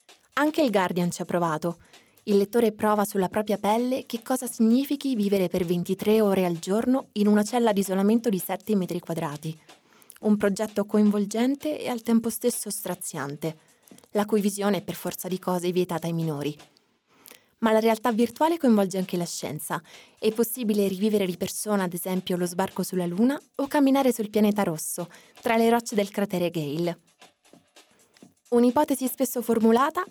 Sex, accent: female, native